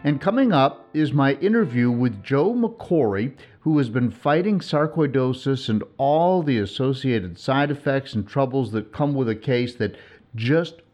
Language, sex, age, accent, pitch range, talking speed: English, male, 50-69, American, 105-135 Hz, 160 wpm